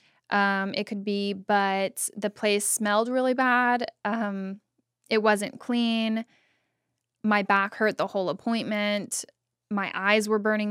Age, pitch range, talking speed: 10-29, 200-230 Hz, 135 wpm